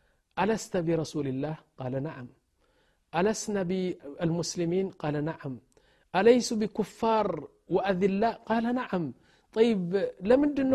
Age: 50-69